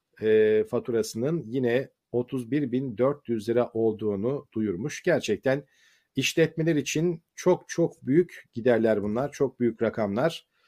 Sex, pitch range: male, 120-160 Hz